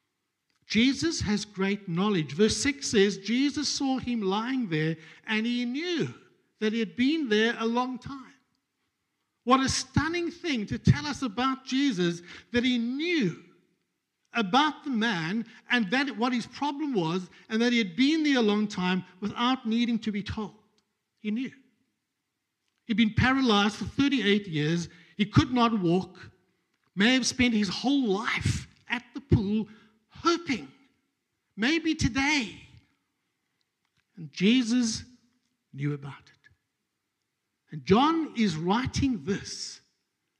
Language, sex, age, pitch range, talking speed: English, male, 60-79, 205-260 Hz, 135 wpm